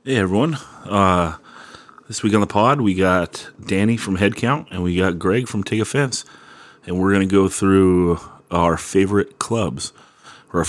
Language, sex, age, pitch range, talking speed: English, male, 30-49, 85-105 Hz, 175 wpm